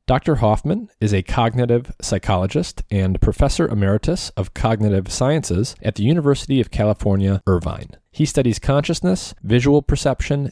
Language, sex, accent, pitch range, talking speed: English, male, American, 95-120 Hz, 130 wpm